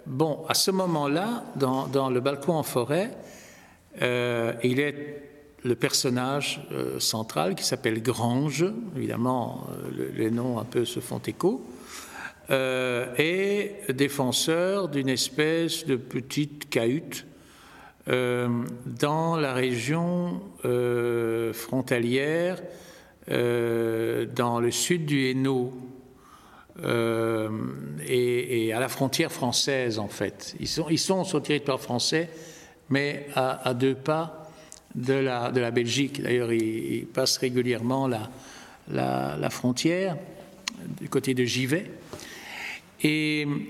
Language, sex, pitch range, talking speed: French, male, 120-160 Hz, 120 wpm